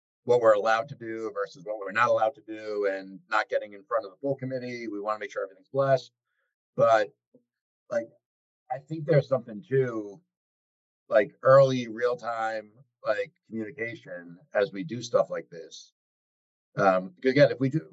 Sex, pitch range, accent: male, 100-140 Hz, American